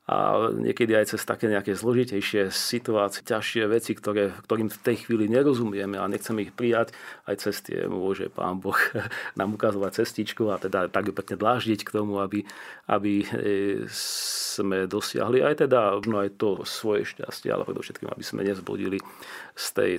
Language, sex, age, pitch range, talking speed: Slovak, male, 40-59, 100-115 Hz, 160 wpm